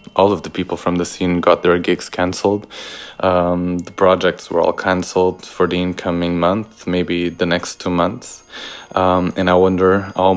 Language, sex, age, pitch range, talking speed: English, male, 20-39, 85-95 Hz, 180 wpm